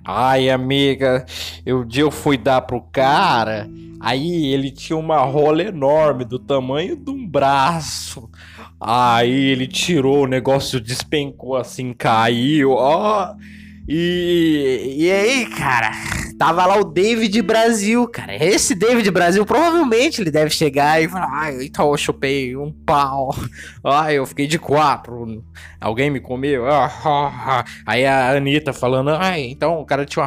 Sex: male